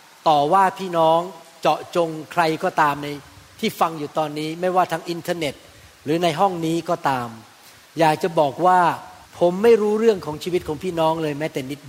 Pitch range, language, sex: 155-195 Hz, Thai, male